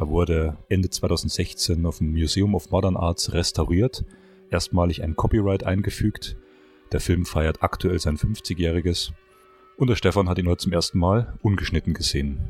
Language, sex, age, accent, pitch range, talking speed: German, male, 30-49, German, 85-110 Hz, 155 wpm